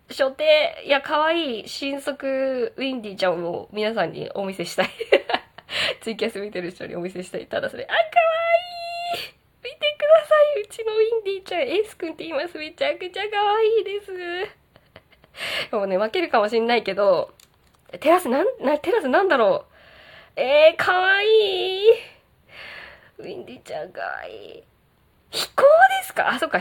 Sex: female